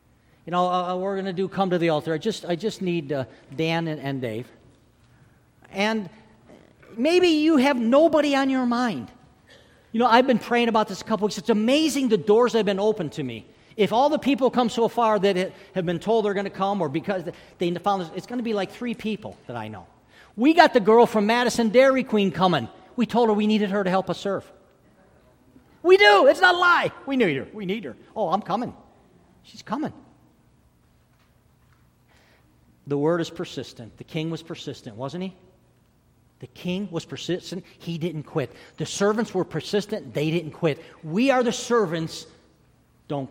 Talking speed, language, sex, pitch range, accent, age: 200 wpm, English, male, 145-220 Hz, American, 50-69